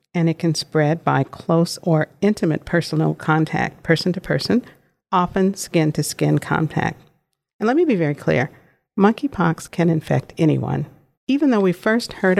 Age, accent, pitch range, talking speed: 50-69, American, 155-175 Hz, 160 wpm